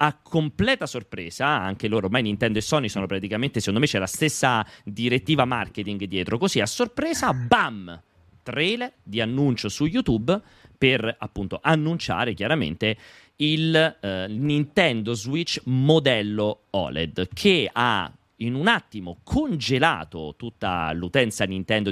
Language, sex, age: Italian, male, 30-49